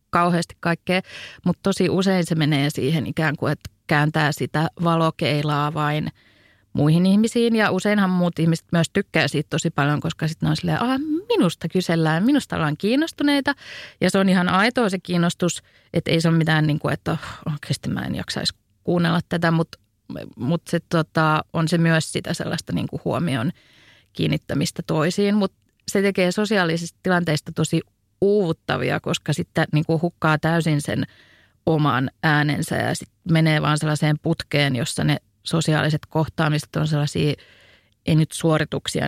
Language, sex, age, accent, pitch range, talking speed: Finnish, female, 30-49, native, 150-180 Hz, 155 wpm